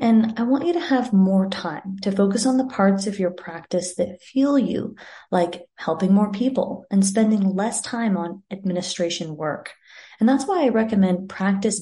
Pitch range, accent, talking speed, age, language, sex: 180-235 Hz, American, 185 wpm, 30-49, English, female